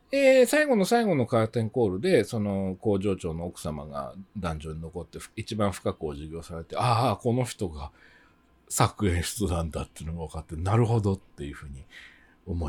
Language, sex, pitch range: Japanese, male, 85-145 Hz